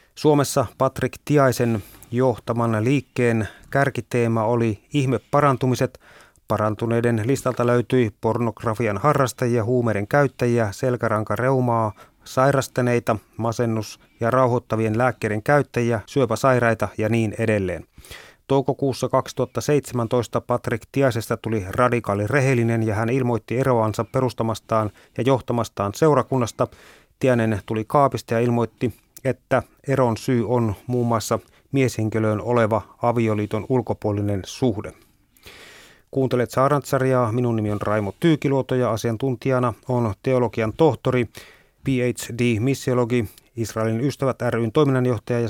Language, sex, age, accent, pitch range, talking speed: Finnish, male, 30-49, native, 110-130 Hz, 100 wpm